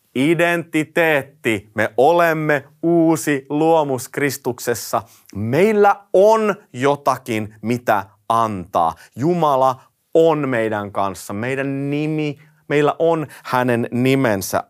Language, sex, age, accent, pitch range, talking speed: Finnish, male, 30-49, native, 120-160 Hz, 85 wpm